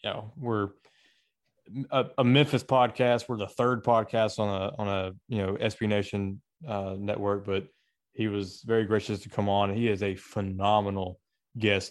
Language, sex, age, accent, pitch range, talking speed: English, male, 20-39, American, 100-110 Hz, 170 wpm